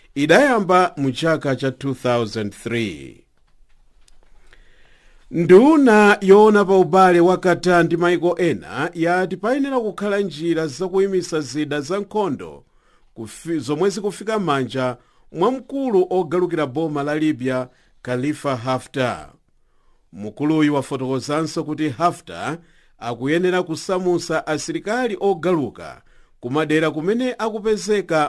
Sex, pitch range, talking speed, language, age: male, 135-180 Hz, 100 wpm, English, 50-69